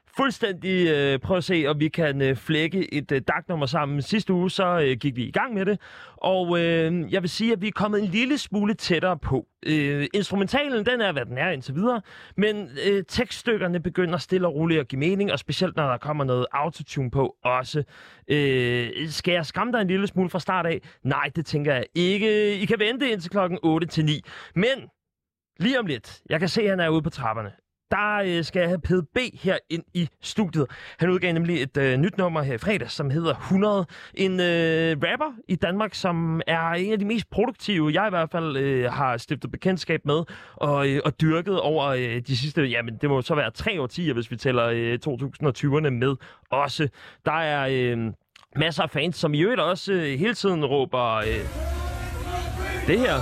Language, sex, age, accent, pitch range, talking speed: Danish, male, 30-49, native, 140-190 Hz, 195 wpm